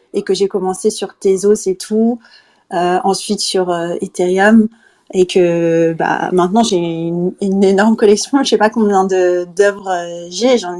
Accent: French